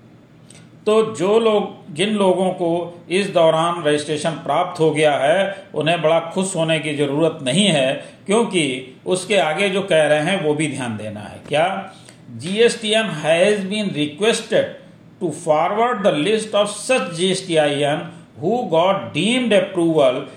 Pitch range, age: 155-200 Hz, 50-69